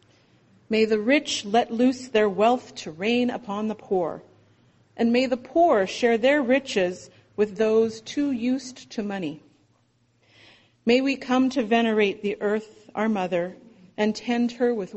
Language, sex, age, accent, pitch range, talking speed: English, female, 40-59, American, 175-235 Hz, 150 wpm